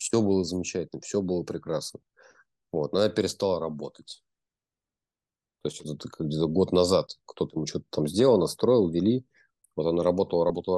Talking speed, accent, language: 150 wpm, native, Russian